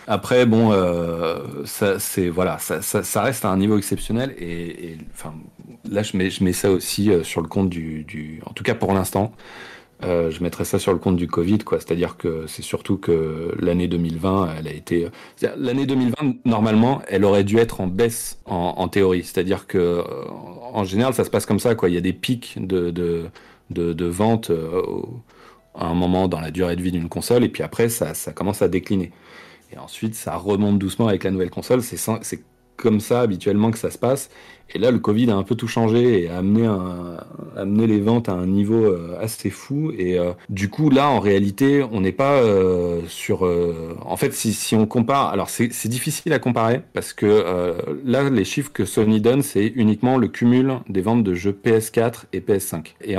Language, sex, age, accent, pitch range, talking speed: French, male, 40-59, French, 90-115 Hz, 210 wpm